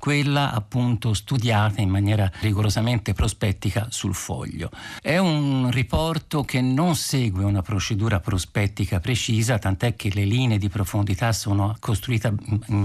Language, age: Italian, 50-69